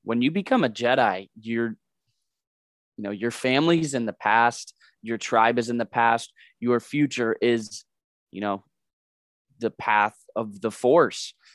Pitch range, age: 110-125 Hz, 20-39